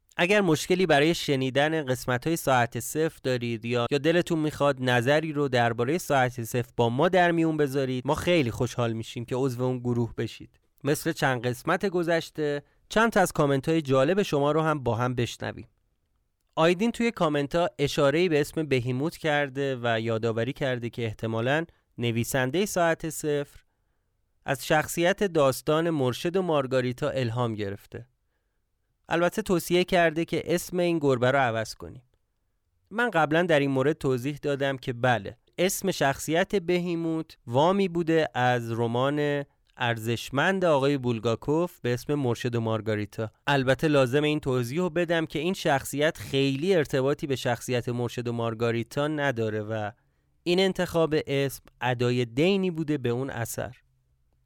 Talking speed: 140 wpm